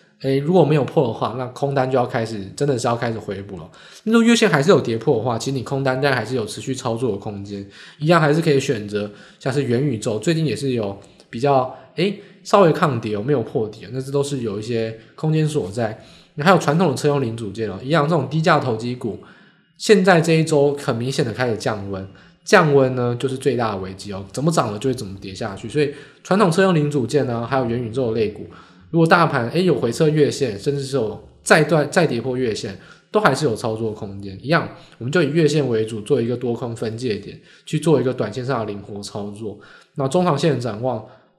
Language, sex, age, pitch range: Chinese, male, 20-39, 115-150 Hz